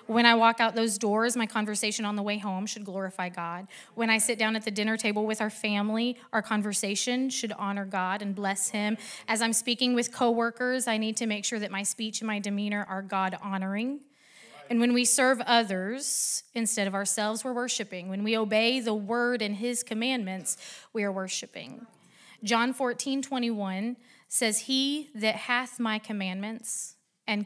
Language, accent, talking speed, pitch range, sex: English, American, 180 wpm, 200-235 Hz, female